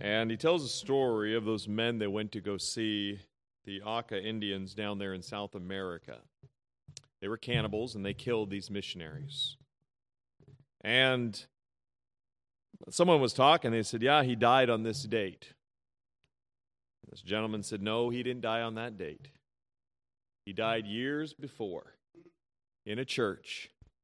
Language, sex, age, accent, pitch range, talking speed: English, male, 40-59, American, 95-130 Hz, 145 wpm